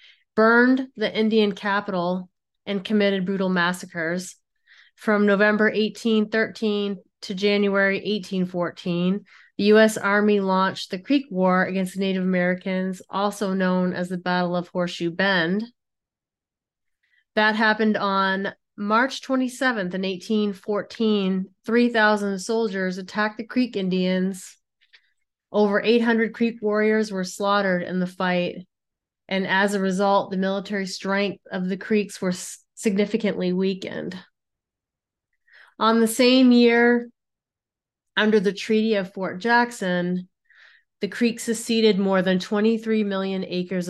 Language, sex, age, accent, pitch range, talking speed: English, female, 30-49, American, 190-220 Hz, 120 wpm